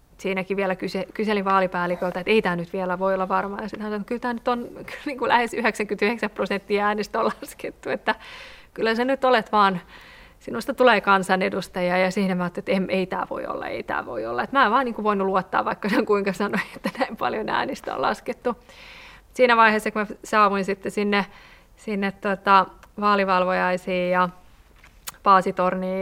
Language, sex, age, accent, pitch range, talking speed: Finnish, female, 30-49, native, 190-210 Hz, 185 wpm